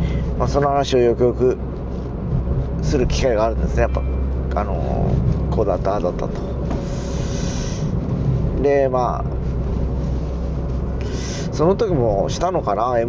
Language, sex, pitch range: Japanese, male, 85-135 Hz